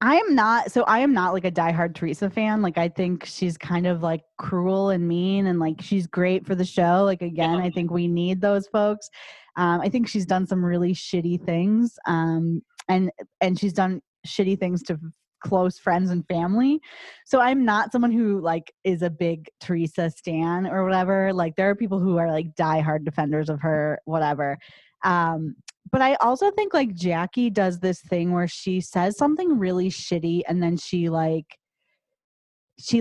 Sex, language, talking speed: female, English, 190 wpm